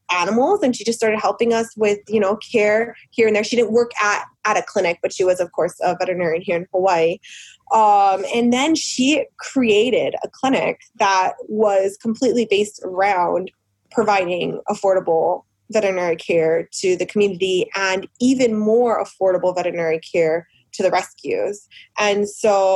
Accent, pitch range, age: American, 185-225 Hz, 20-39